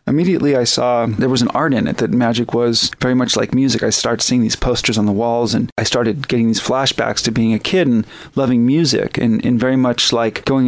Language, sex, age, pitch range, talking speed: English, male, 30-49, 115-135 Hz, 240 wpm